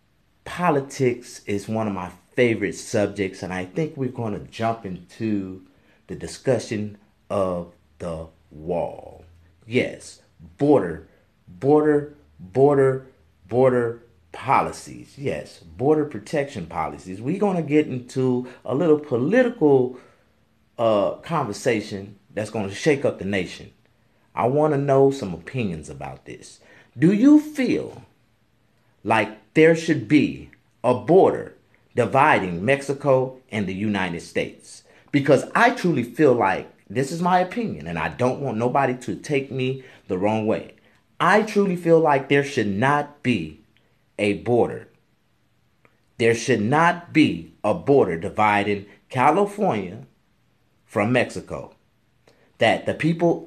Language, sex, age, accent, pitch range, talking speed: English, male, 30-49, American, 105-150 Hz, 125 wpm